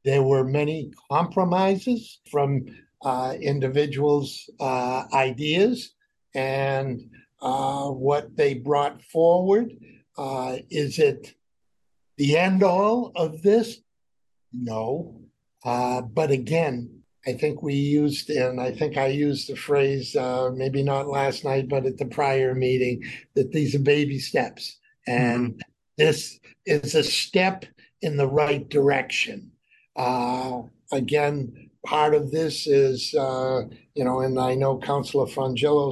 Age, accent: 60-79, American